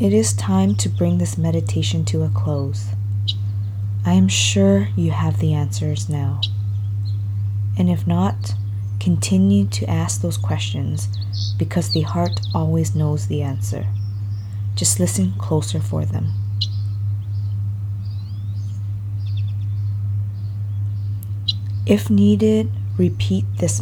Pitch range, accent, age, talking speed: 95-100 Hz, American, 20-39, 105 wpm